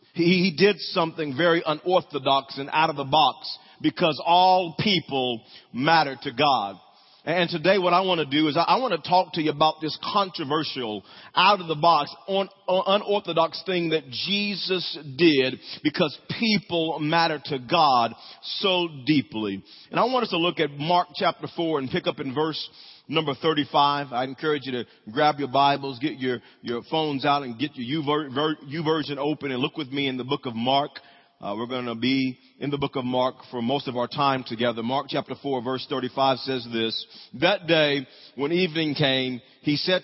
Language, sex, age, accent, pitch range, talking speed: English, male, 40-59, American, 140-180 Hz, 185 wpm